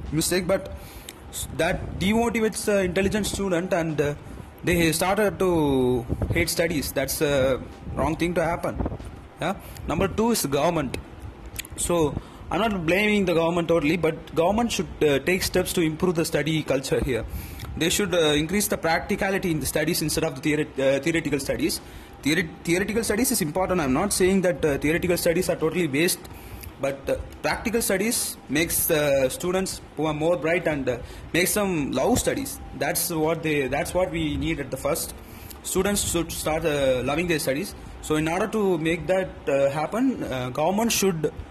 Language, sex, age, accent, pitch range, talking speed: English, male, 30-49, Indian, 140-185 Hz, 170 wpm